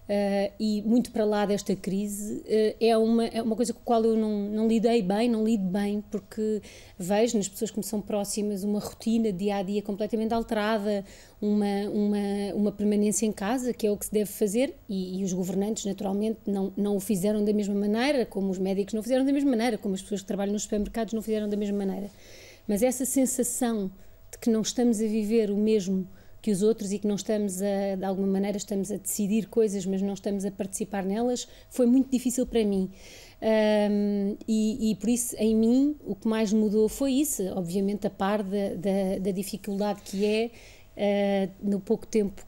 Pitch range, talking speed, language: 200-220 Hz, 205 wpm, Portuguese